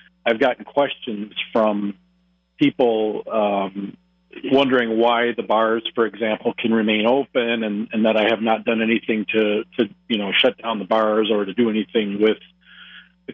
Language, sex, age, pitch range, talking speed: English, male, 50-69, 105-120 Hz, 165 wpm